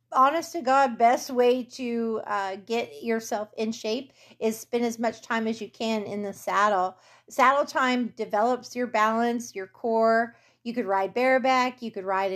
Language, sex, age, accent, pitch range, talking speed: English, female, 30-49, American, 205-240 Hz, 175 wpm